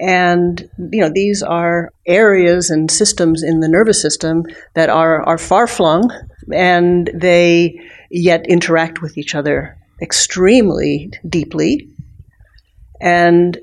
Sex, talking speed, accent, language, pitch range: female, 115 wpm, American, English, 160-190 Hz